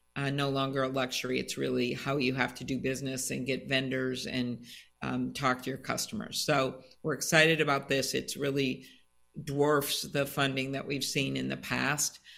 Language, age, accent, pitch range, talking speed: English, 50-69, American, 130-145 Hz, 185 wpm